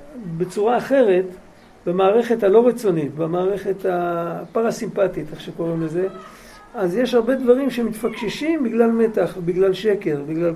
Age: 50-69